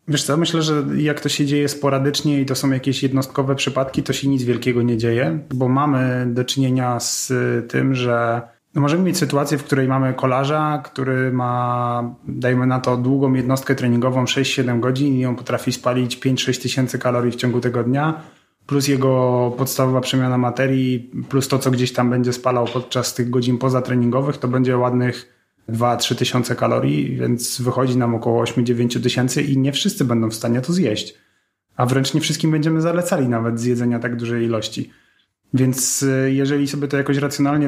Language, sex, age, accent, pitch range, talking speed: Polish, male, 30-49, native, 125-140 Hz, 175 wpm